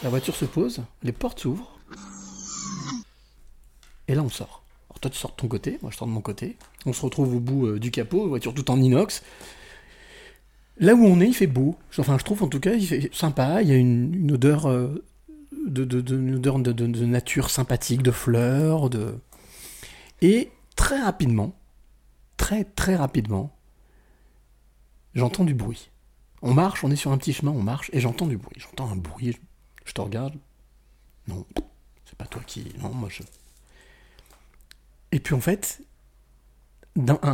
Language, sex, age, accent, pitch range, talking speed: French, male, 40-59, French, 110-155 Hz, 180 wpm